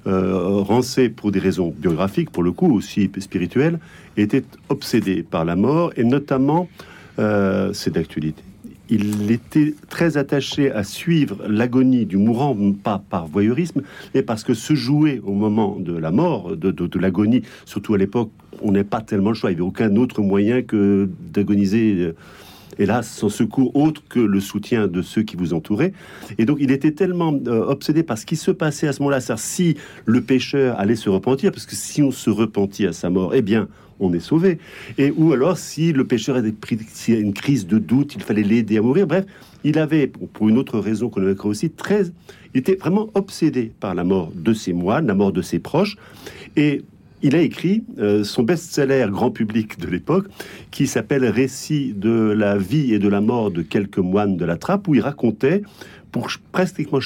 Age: 50-69